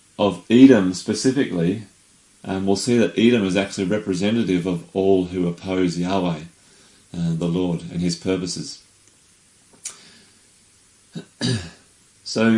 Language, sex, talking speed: English, male, 110 wpm